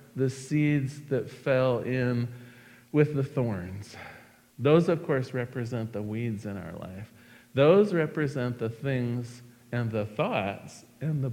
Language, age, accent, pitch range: English, 50-69, American, 120-150 Hz